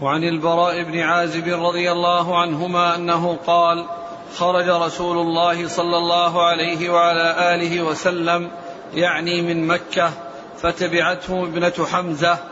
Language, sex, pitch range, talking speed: Arabic, male, 170-180 Hz, 115 wpm